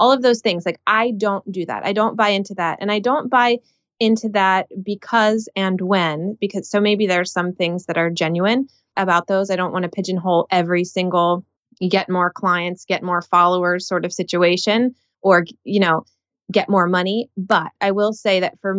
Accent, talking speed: American, 200 wpm